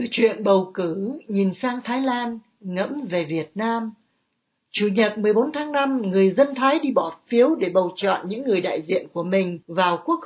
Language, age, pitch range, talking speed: Vietnamese, 60-79, 195-265 Hz, 195 wpm